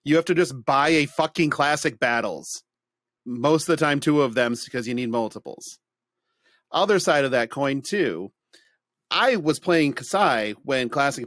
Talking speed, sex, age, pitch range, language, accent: 170 wpm, male, 40-59, 120-160 Hz, English, American